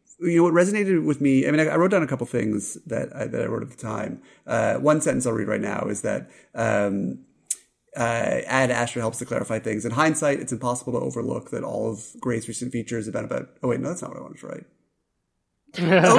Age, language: 30-49, English